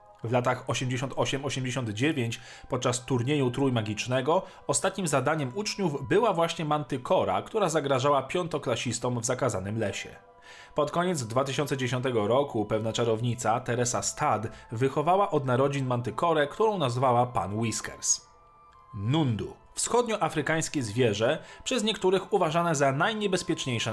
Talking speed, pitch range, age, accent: 105 wpm, 125-165 Hz, 40-59, native